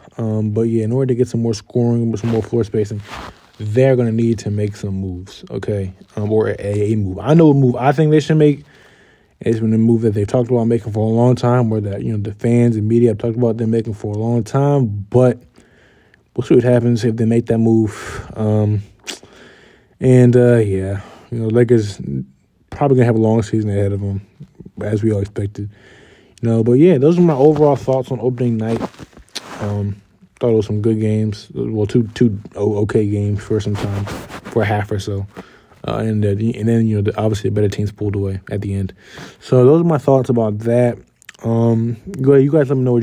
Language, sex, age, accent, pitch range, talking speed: English, male, 20-39, American, 105-120 Hz, 220 wpm